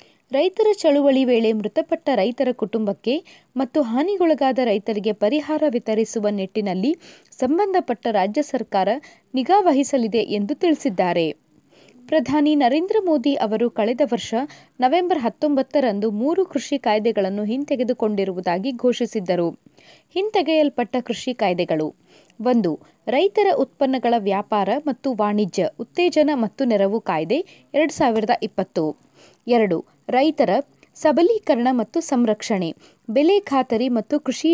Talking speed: 95 wpm